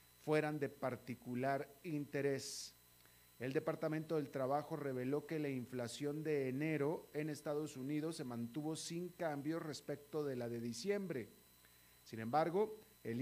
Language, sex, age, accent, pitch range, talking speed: Spanish, male, 40-59, Mexican, 125-165 Hz, 130 wpm